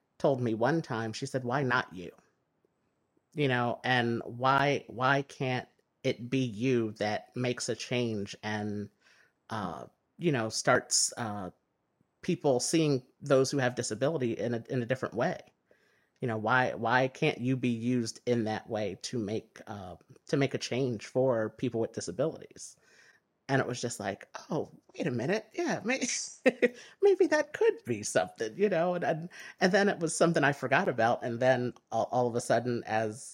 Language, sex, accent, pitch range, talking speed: English, male, American, 110-140 Hz, 175 wpm